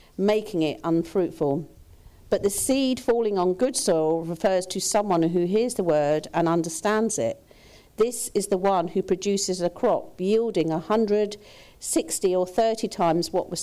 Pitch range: 165-220 Hz